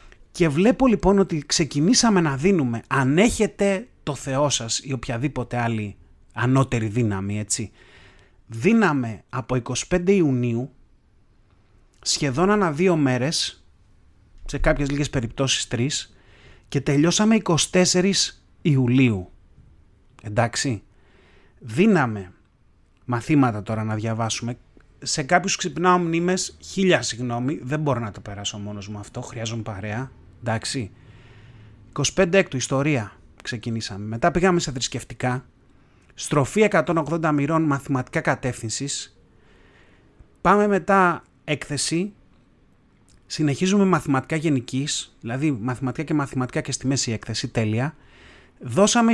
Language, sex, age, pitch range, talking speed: Greek, male, 30-49, 115-160 Hz, 105 wpm